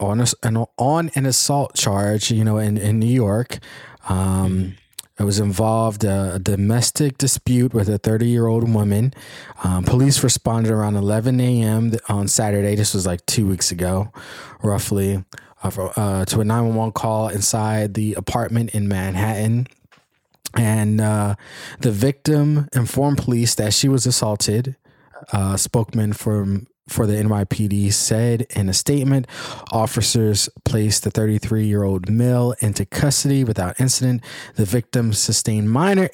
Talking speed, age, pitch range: 140 wpm, 20-39, 100-125 Hz